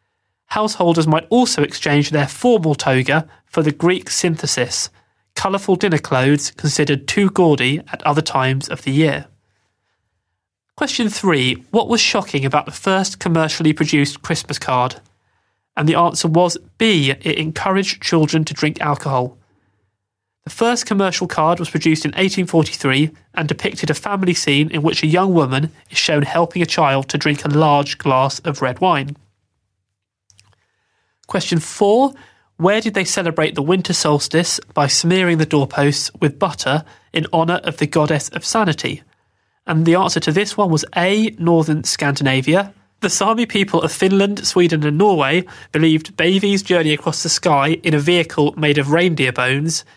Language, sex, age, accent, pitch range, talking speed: English, male, 30-49, British, 140-175 Hz, 155 wpm